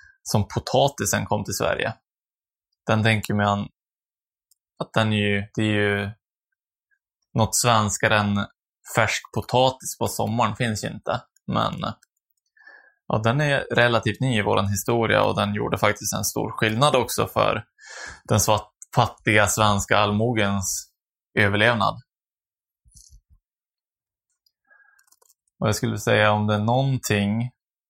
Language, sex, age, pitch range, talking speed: Swedish, male, 20-39, 105-125 Hz, 120 wpm